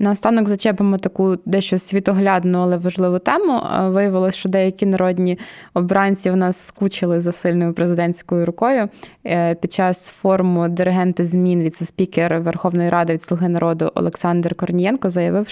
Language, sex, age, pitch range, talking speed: Ukrainian, female, 20-39, 170-195 Hz, 130 wpm